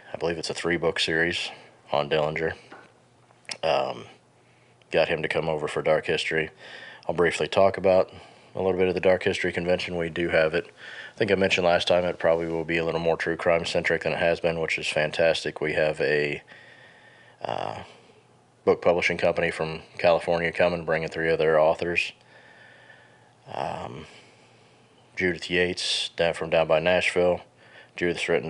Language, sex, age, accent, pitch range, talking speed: English, male, 30-49, American, 80-95 Hz, 165 wpm